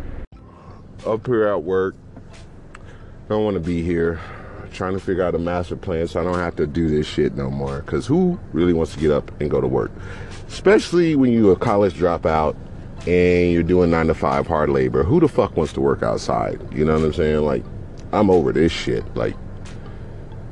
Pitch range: 80-100 Hz